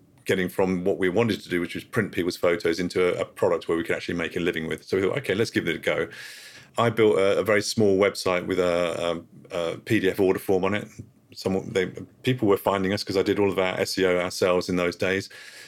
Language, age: English, 40-59